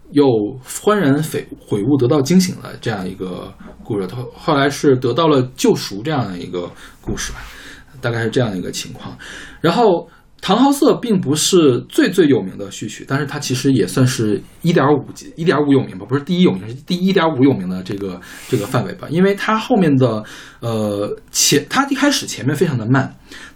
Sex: male